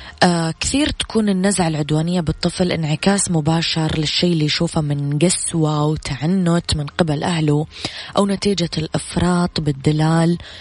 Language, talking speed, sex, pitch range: Arabic, 115 wpm, female, 150-175 Hz